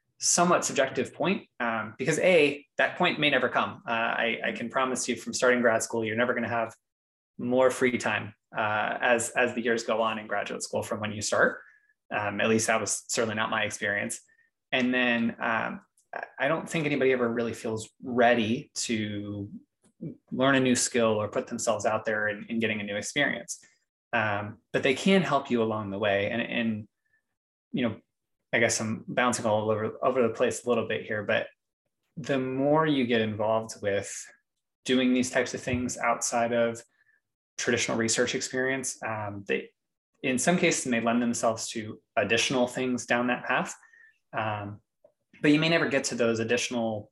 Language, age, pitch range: English, 20-39, 110-130 Hz